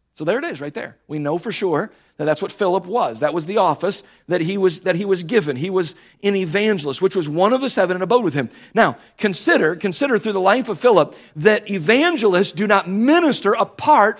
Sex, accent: male, American